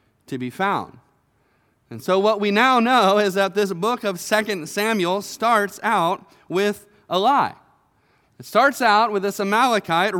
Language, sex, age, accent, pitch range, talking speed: English, male, 30-49, American, 200-250 Hz, 160 wpm